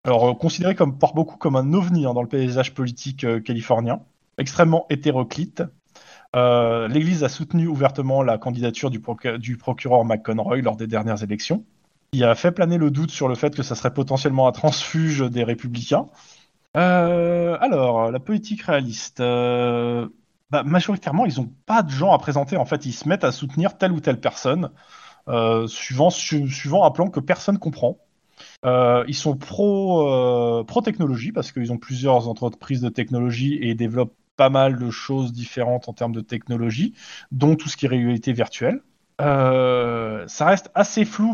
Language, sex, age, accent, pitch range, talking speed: French, male, 20-39, French, 120-165 Hz, 175 wpm